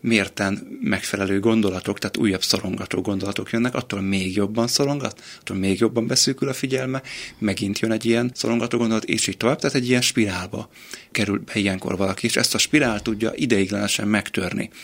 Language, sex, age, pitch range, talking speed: Hungarian, male, 30-49, 100-115 Hz, 170 wpm